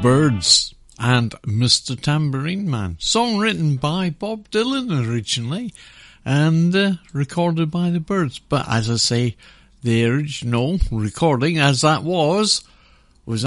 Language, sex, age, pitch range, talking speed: English, male, 60-79, 130-175 Hz, 125 wpm